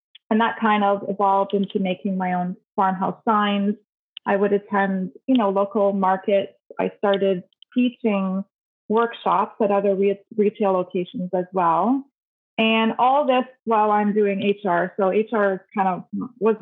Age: 20-39